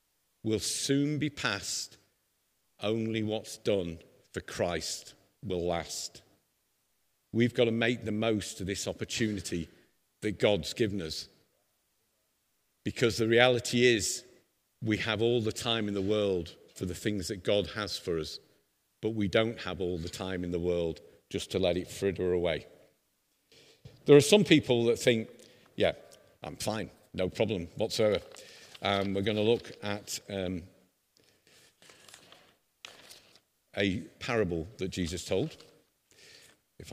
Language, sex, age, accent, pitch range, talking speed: English, male, 50-69, British, 90-115 Hz, 140 wpm